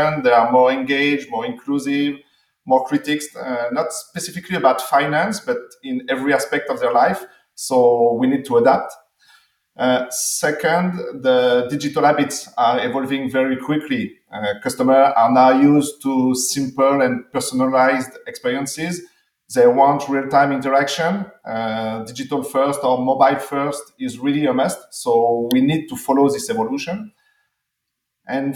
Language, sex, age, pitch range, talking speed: English, male, 40-59, 130-160 Hz, 135 wpm